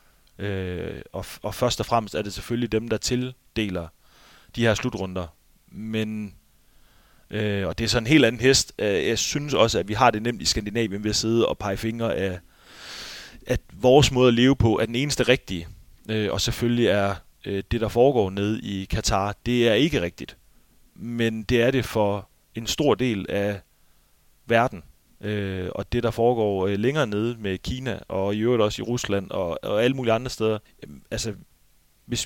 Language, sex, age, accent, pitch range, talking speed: Danish, male, 30-49, native, 95-120 Hz, 175 wpm